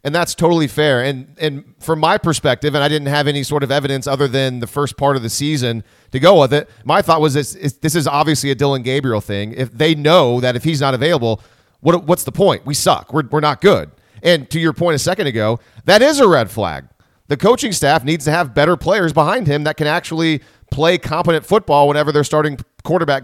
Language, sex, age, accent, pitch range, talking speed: English, male, 30-49, American, 140-170 Hz, 235 wpm